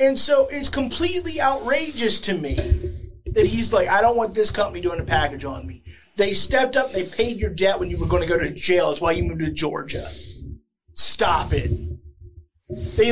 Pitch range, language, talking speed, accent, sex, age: 160-235 Hz, English, 200 wpm, American, male, 30-49